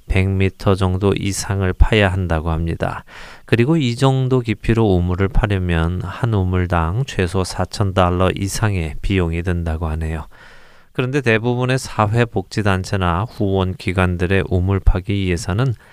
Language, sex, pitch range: Korean, male, 90-115 Hz